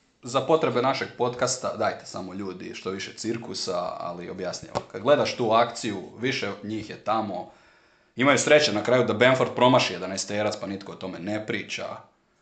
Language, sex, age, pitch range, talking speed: Croatian, male, 30-49, 100-125 Hz, 175 wpm